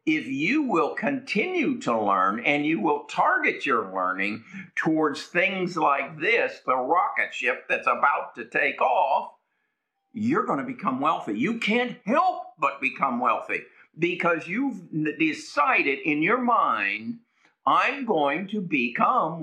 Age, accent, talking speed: 50-69, American, 140 wpm